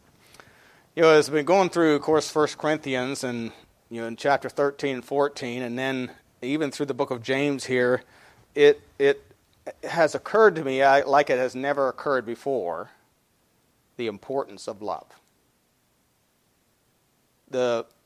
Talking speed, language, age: 155 wpm, English, 40-59